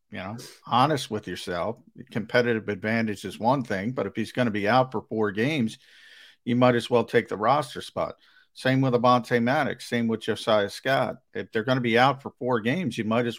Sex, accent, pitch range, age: male, American, 105-125 Hz, 50-69